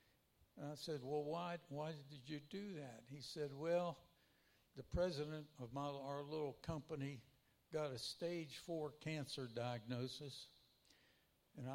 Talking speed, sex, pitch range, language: 140 wpm, male, 135-165 Hz, English